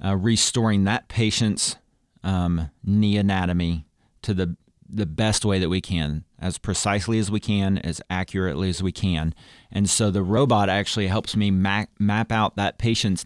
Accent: American